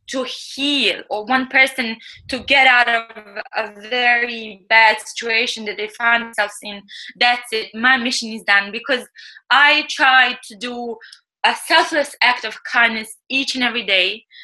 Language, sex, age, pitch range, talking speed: English, female, 20-39, 215-270 Hz, 160 wpm